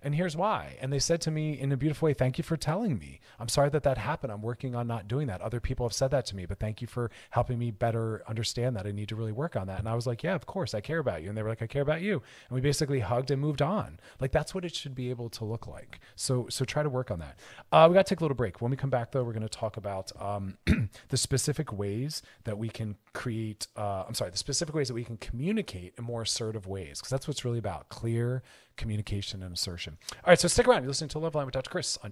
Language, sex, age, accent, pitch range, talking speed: English, male, 30-49, American, 105-135 Hz, 290 wpm